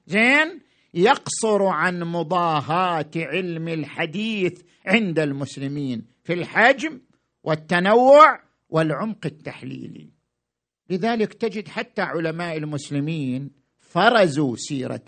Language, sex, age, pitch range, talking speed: Arabic, male, 50-69, 190-260 Hz, 80 wpm